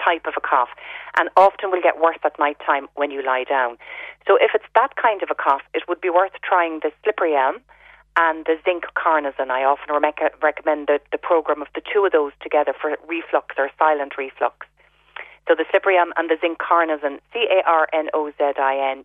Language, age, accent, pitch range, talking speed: English, 40-59, Irish, 140-170 Hz, 200 wpm